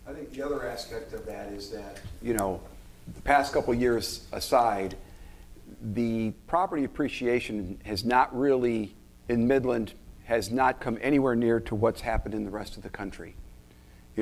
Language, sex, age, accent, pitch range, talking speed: English, male, 50-69, American, 105-135 Hz, 170 wpm